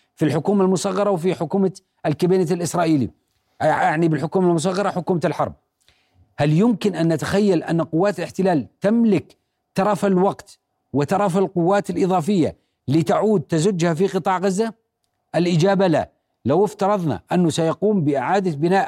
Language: Arabic